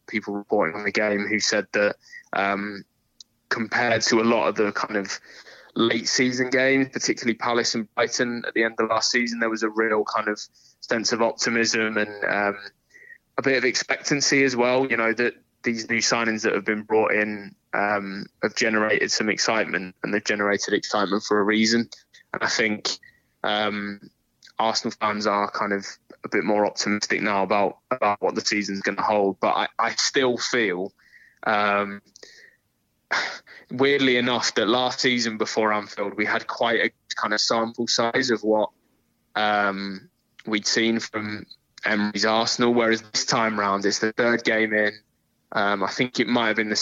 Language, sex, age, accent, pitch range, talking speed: English, male, 20-39, British, 100-115 Hz, 175 wpm